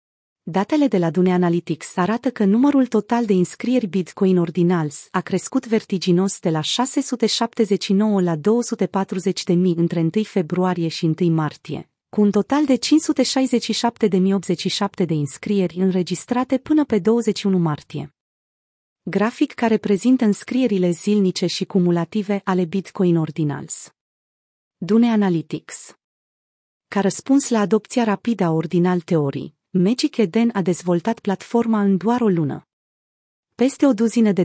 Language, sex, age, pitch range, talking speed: Romanian, female, 30-49, 175-225 Hz, 125 wpm